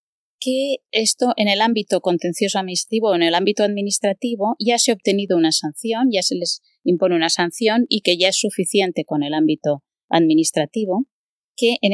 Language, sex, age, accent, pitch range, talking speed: Spanish, female, 20-39, Spanish, 165-220 Hz, 175 wpm